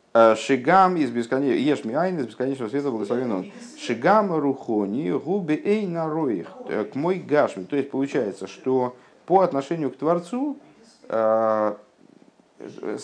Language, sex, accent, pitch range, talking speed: Russian, male, native, 100-145 Hz, 110 wpm